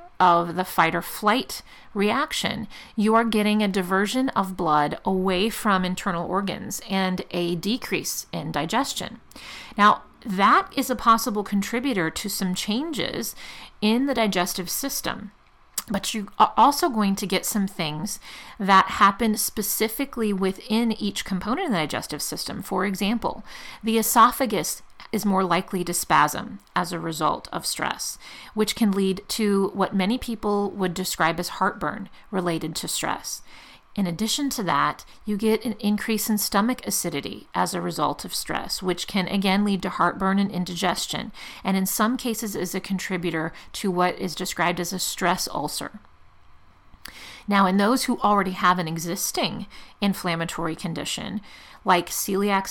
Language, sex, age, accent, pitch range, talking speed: English, female, 40-59, American, 180-220 Hz, 150 wpm